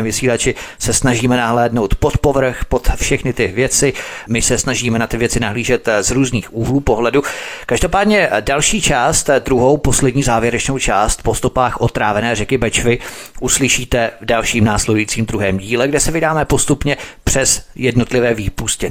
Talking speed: 145 wpm